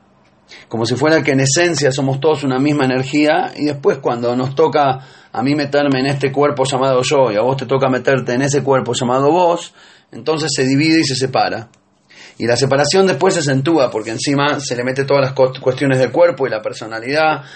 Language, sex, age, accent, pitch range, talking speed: Spanish, male, 30-49, Argentinian, 125-150 Hz, 205 wpm